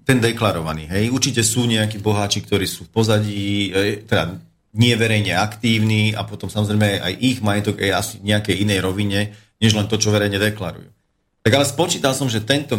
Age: 40-59